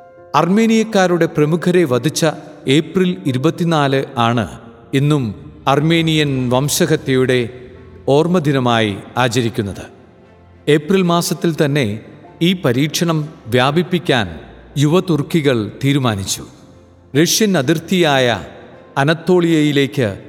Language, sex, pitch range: Malayalam, male, 125-170 Hz